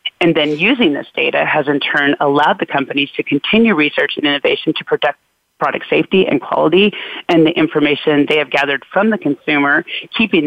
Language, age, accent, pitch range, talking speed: English, 30-49, American, 145-170 Hz, 185 wpm